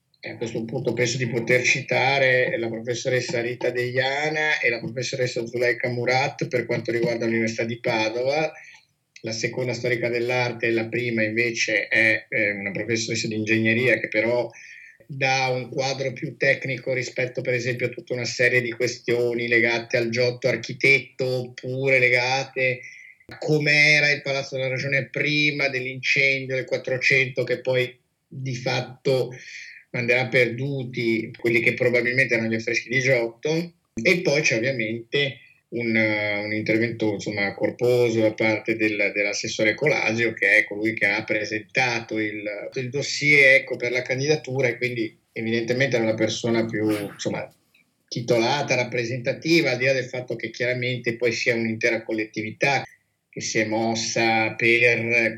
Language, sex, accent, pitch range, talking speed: Italian, male, native, 115-130 Hz, 145 wpm